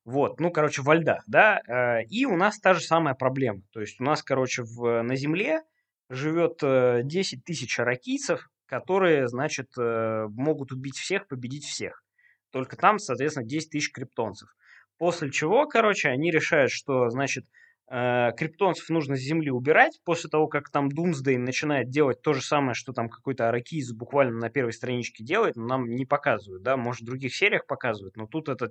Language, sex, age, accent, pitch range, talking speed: Russian, male, 20-39, native, 120-155 Hz, 170 wpm